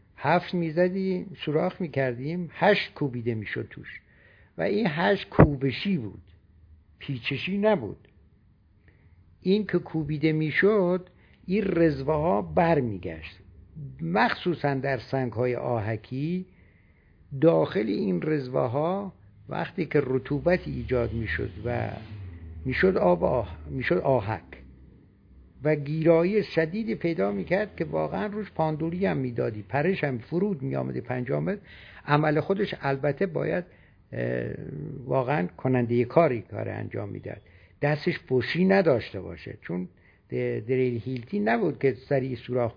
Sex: male